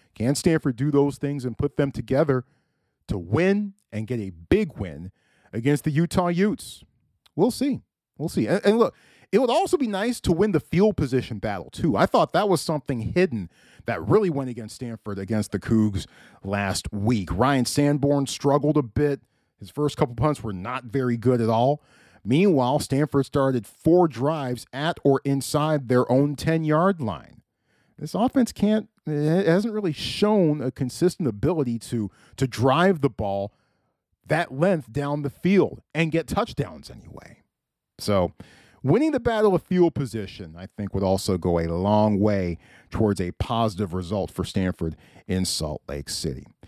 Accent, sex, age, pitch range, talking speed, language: American, male, 40-59, 110-180 Hz, 165 wpm, English